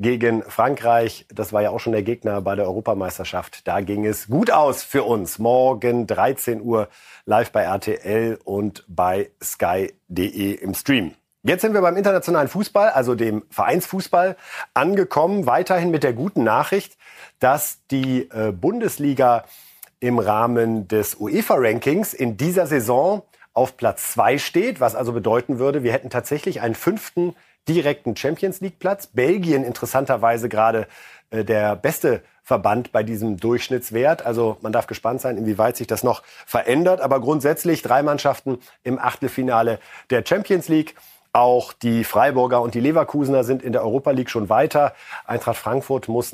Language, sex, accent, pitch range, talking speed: German, male, German, 110-140 Hz, 150 wpm